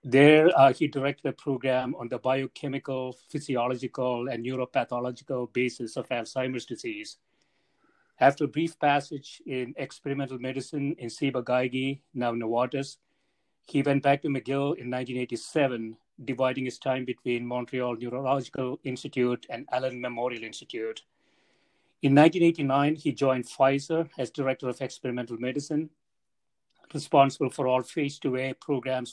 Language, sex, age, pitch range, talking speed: English, male, 30-49, 125-140 Hz, 130 wpm